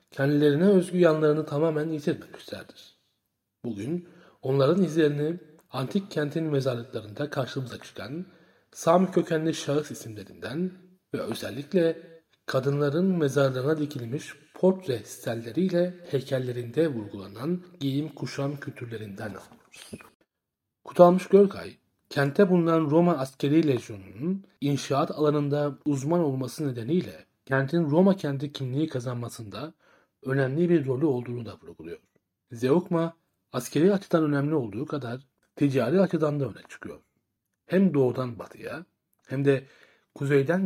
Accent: native